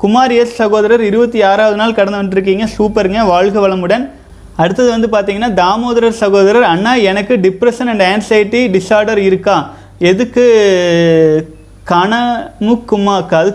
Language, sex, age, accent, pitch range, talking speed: Tamil, male, 30-49, native, 190-235 Hz, 110 wpm